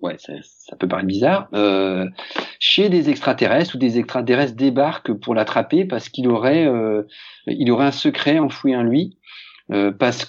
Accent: French